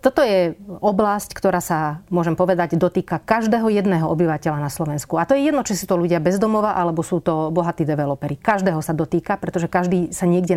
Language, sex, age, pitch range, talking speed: Slovak, female, 30-49, 165-210 Hz, 195 wpm